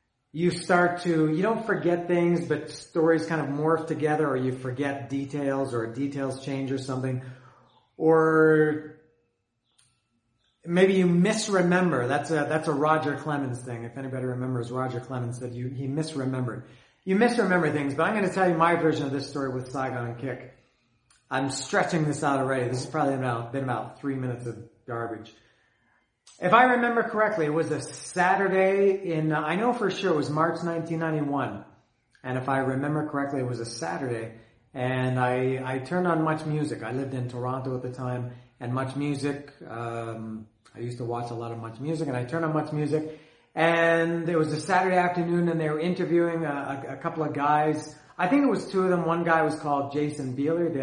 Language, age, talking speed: English, 40-59, 195 wpm